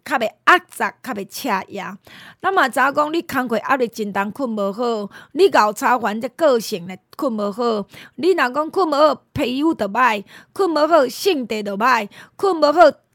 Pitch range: 210-285 Hz